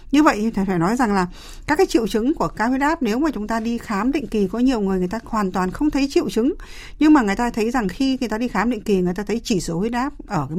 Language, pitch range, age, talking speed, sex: Vietnamese, 185-240 Hz, 60-79, 315 wpm, female